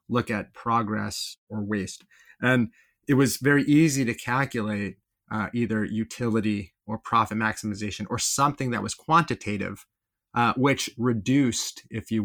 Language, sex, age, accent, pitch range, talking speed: English, male, 30-49, American, 105-130 Hz, 135 wpm